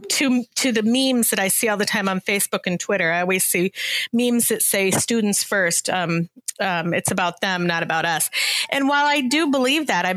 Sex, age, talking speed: female, 40-59, 220 wpm